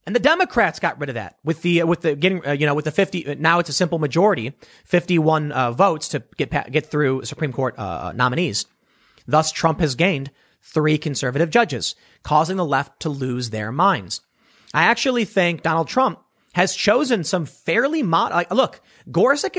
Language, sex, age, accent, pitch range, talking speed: English, male, 30-49, American, 155-215 Hz, 185 wpm